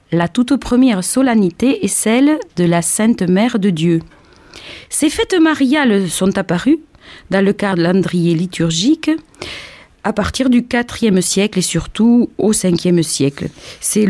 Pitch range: 165-235 Hz